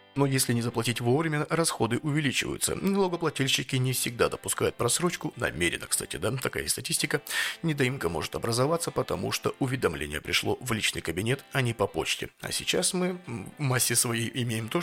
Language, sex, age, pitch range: Russian, male, 30-49, 115-165 Hz